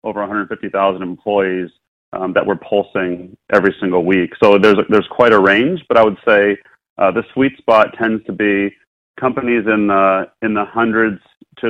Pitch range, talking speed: 95-105 Hz, 180 wpm